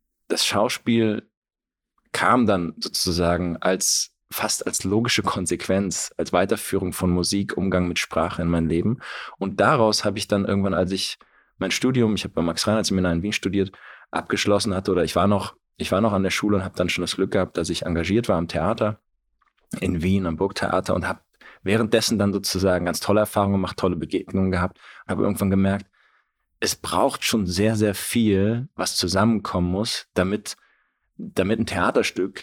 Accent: German